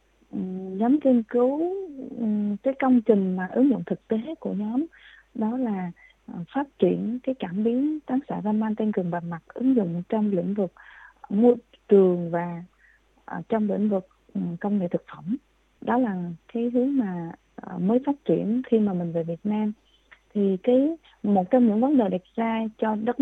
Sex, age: female, 20-39